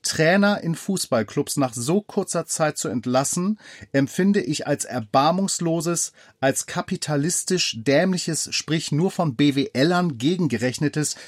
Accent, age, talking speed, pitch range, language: German, 40-59, 110 wpm, 135-180 Hz, German